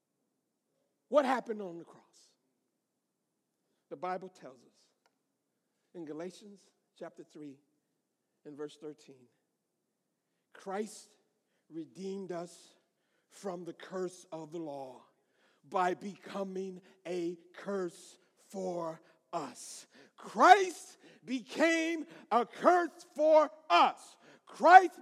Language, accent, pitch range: English, American, 195-315 Hz